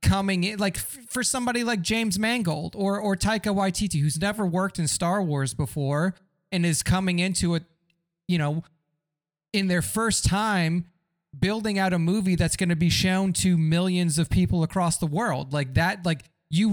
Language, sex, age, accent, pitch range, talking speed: English, male, 30-49, American, 150-180 Hz, 180 wpm